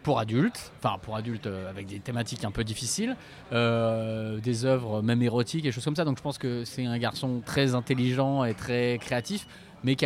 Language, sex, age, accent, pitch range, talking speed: French, male, 20-39, French, 120-145 Hz, 205 wpm